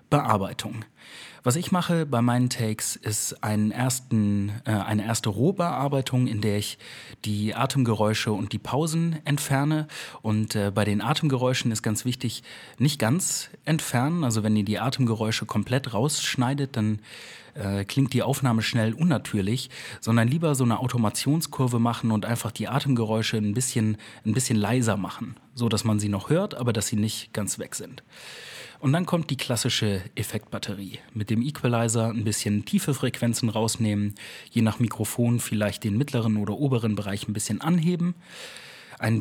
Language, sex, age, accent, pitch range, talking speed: German, male, 30-49, German, 110-135 Hz, 160 wpm